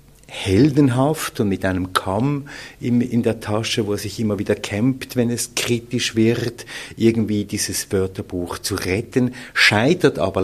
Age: 50-69